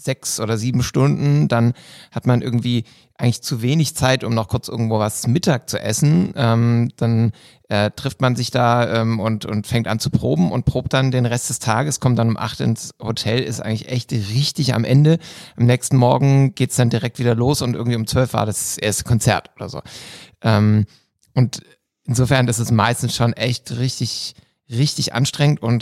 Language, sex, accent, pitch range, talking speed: German, male, German, 110-130 Hz, 195 wpm